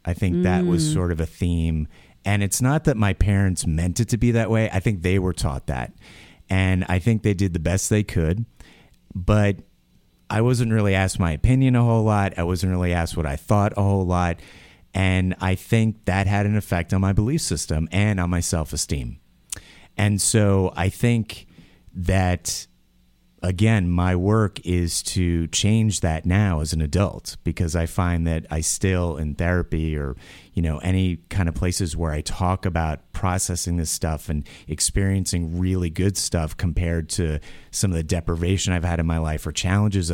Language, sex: English, male